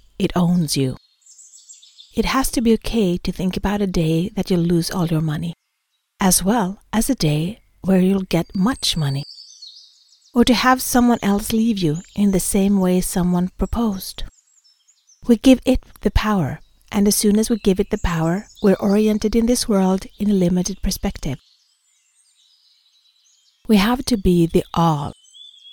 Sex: female